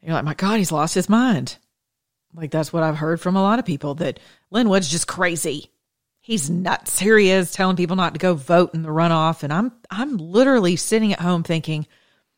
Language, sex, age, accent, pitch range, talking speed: English, female, 40-59, American, 160-240 Hz, 215 wpm